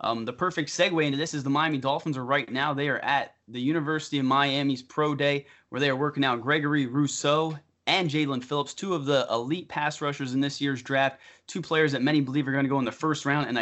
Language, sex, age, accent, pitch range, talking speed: English, male, 20-39, American, 130-155 Hz, 245 wpm